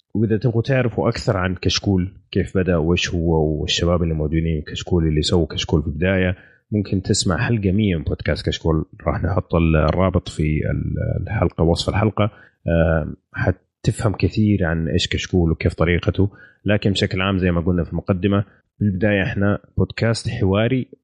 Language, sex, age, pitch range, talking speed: Arabic, male, 30-49, 85-110 Hz, 150 wpm